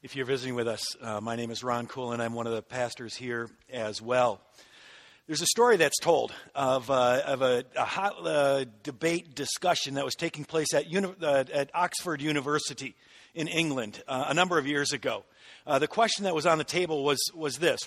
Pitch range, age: 145-195 Hz, 50-69